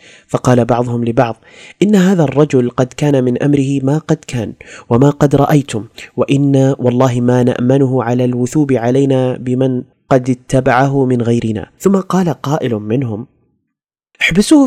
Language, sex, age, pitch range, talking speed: Arabic, male, 30-49, 120-150 Hz, 135 wpm